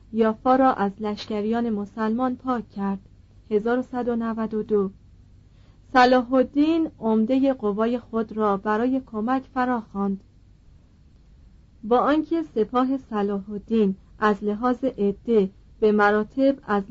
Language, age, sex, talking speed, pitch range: Persian, 40-59, female, 95 wpm, 200-245 Hz